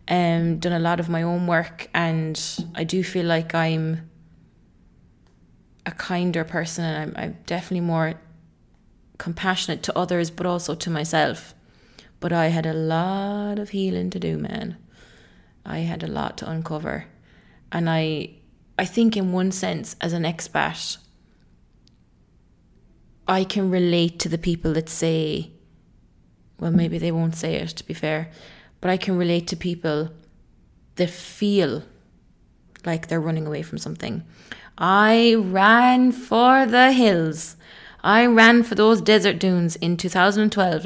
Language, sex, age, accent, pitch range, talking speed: English, female, 20-39, Irish, 160-200 Hz, 145 wpm